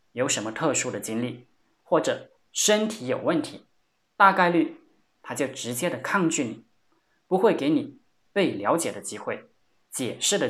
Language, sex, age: Chinese, male, 20-39